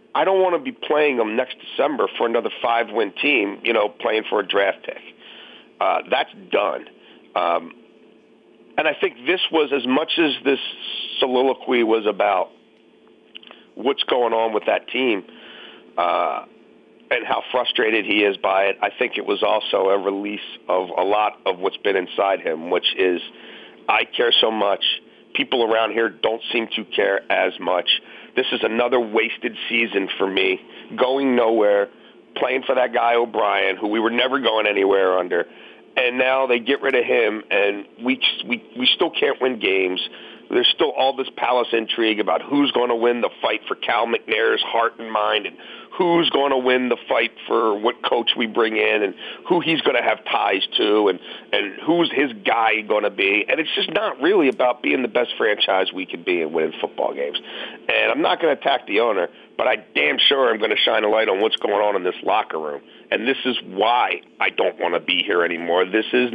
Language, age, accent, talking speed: English, 50-69, American, 200 wpm